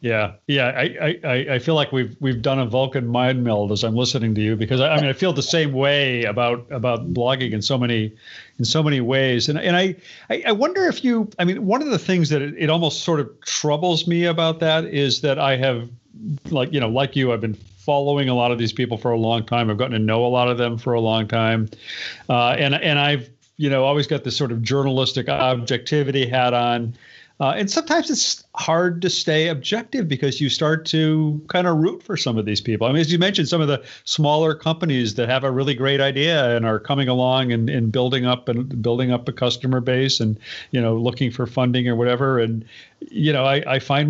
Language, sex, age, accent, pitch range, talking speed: English, male, 40-59, American, 120-155 Hz, 235 wpm